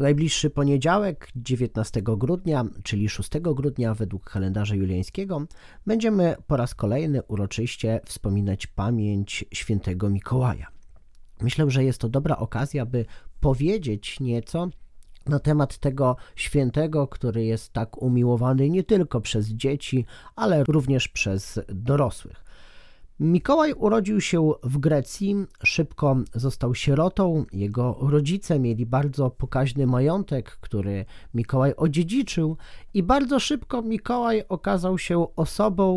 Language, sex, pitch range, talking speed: Polish, male, 115-170 Hz, 115 wpm